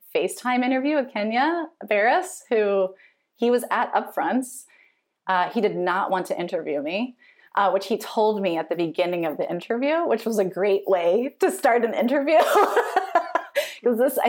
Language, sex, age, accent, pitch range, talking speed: English, female, 30-49, American, 190-295 Hz, 160 wpm